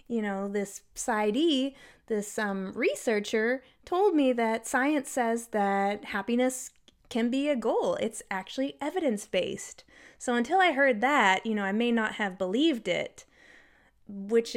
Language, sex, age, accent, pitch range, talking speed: English, female, 20-39, American, 210-275 Hz, 145 wpm